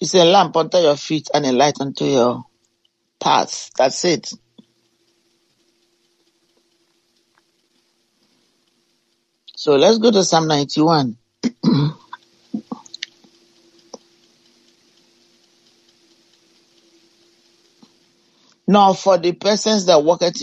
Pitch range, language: 160-205 Hz, English